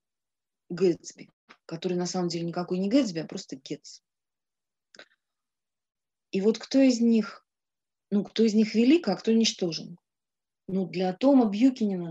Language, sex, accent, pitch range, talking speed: Russian, female, native, 180-230 Hz, 140 wpm